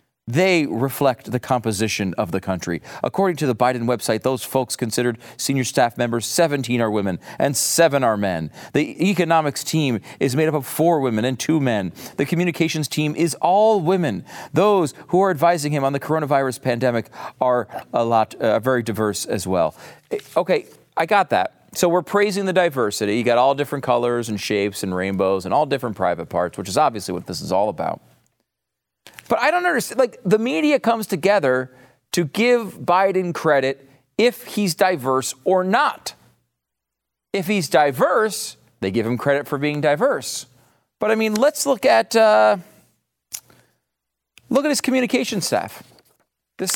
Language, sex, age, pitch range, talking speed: English, male, 40-59, 120-195 Hz, 170 wpm